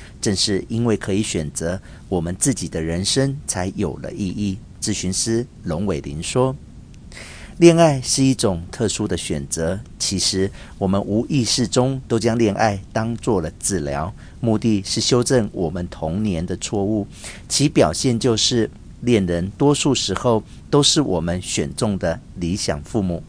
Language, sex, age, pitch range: Chinese, male, 50-69, 90-120 Hz